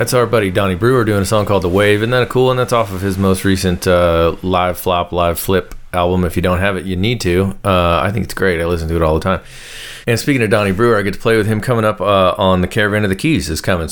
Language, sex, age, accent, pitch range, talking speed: English, male, 30-49, American, 90-110 Hz, 300 wpm